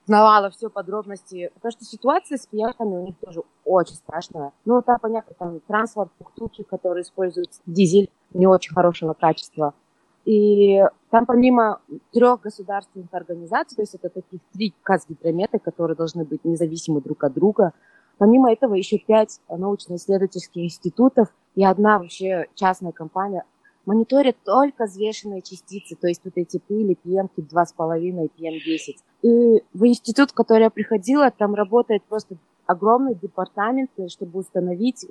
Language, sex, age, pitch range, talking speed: Russian, female, 20-39, 175-225 Hz, 140 wpm